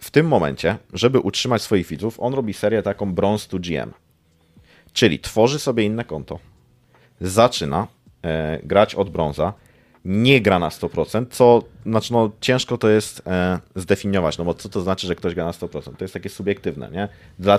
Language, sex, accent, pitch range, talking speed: Polish, male, native, 90-110 Hz, 175 wpm